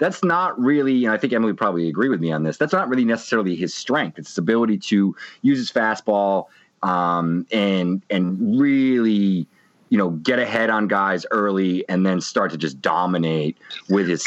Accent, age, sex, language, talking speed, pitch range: American, 30-49, male, English, 195 wpm, 90-120 Hz